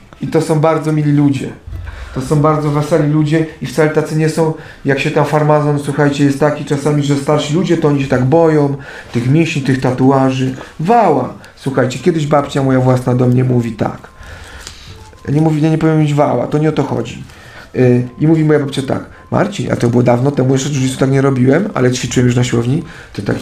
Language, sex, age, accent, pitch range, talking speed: Polish, male, 40-59, native, 130-155 Hz, 205 wpm